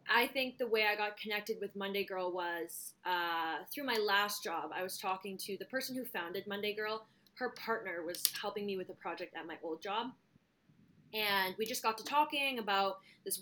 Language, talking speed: English, 205 wpm